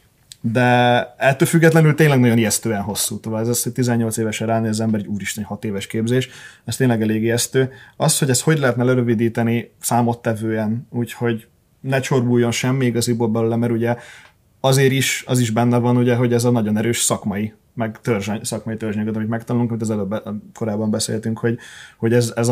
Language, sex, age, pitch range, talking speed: Hungarian, male, 20-39, 115-125 Hz, 170 wpm